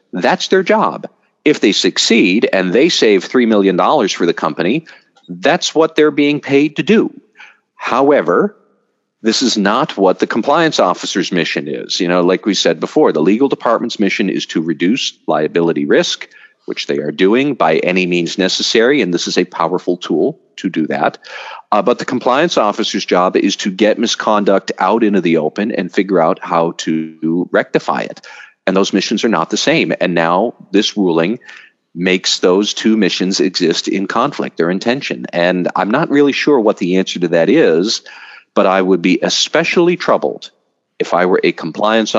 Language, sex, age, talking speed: English, male, 40-59, 180 wpm